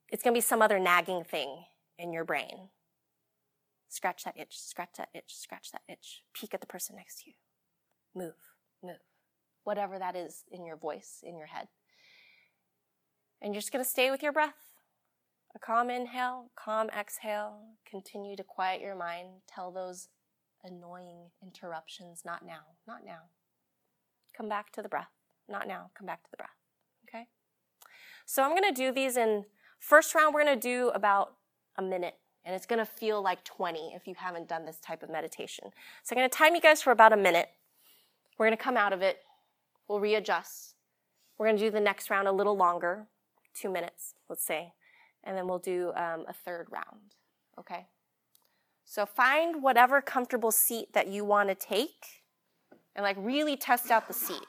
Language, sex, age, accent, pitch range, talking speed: English, female, 20-39, American, 180-240 Hz, 175 wpm